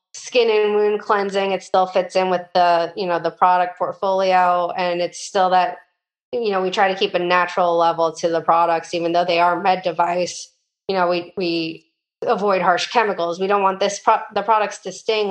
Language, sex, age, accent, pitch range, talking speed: English, female, 20-39, American, 170-195 Hz, 205 wpm